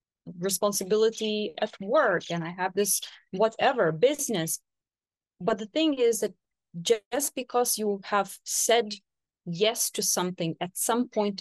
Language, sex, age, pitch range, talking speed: English, female, 20-39, 175-220 Hz, 130 wpm